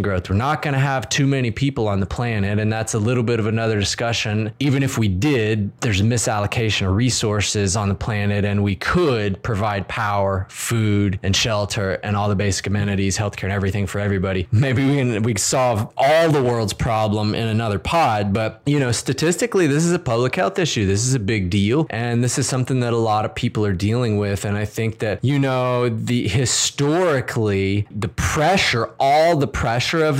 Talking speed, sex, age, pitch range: 205 wpm, male, 20-39, 105-130 Hz